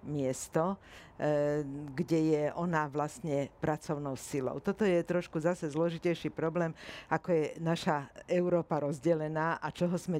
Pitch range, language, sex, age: 150-175 Hz, Slovak, female, 50-69